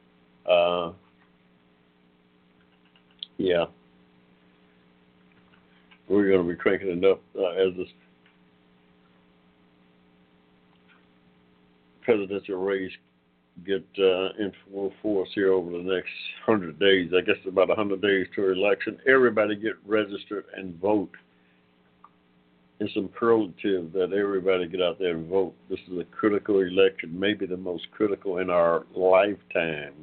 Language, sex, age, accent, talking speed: English, male, 60-79, American, 125 wpm